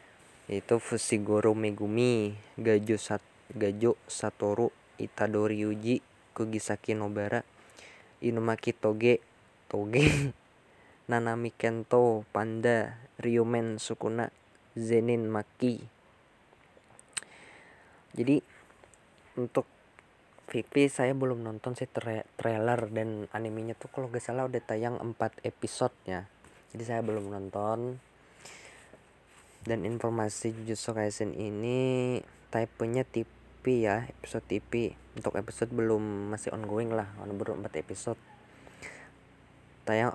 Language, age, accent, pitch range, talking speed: Indonesian, 20-39, native, 105-120 Hz, 95 wpm